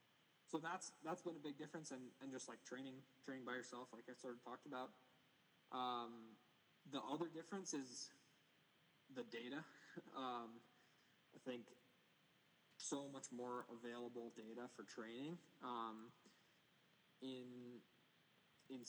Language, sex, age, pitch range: English, male, 20-39, 110-140 Hz